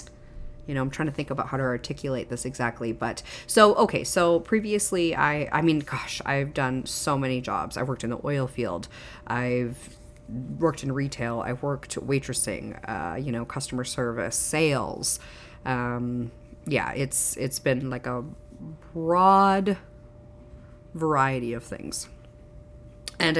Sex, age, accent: female, 30-49, American